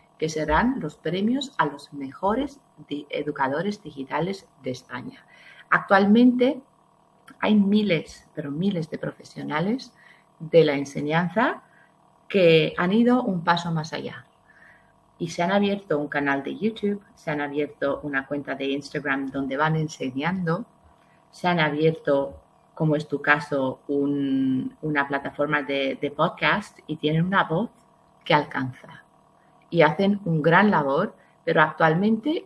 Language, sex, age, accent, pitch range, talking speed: Spanish, female, 40-59, Spanish, 145-195 Hz, 130 wpm